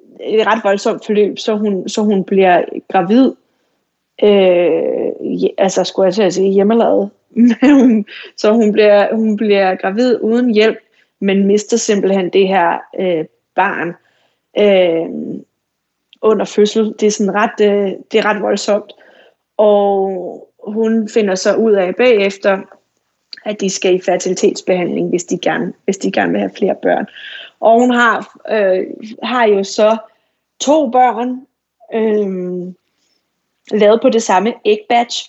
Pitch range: 195-230 Hz